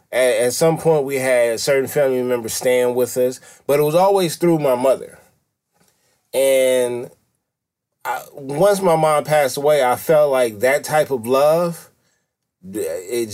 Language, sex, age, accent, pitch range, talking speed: English, male, 20-39, American, 120-155 Hz, 155 wpm